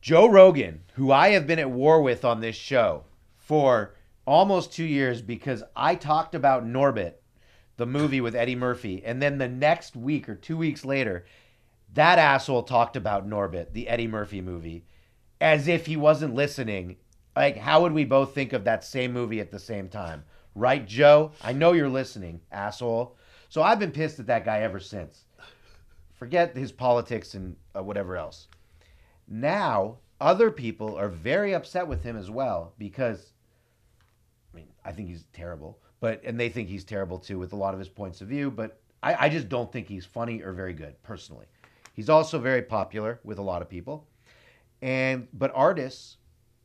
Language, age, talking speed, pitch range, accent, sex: English, 40-59, 185 wpm, 100-135 Hz, American, male